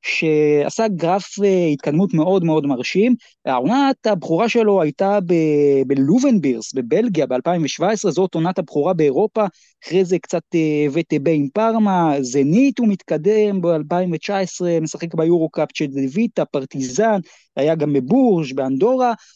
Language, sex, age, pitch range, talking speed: Hebrew, male, 20-39, 155-215 Hz, 125 wpm